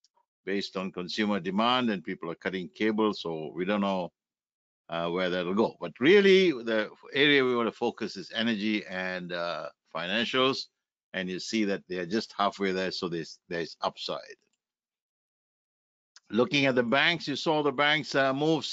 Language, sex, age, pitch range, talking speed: English, male, 60-79, 95-140 Hz, 175 wpm